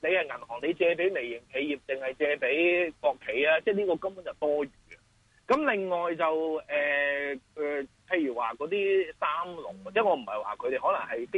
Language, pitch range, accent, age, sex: Chinese, 145-235 Hz, native, 30-49, male